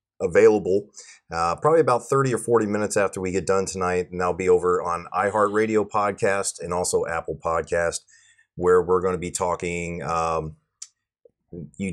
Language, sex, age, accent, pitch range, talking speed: English, male, 30-49, American, 90-120 Hz, 160 wpm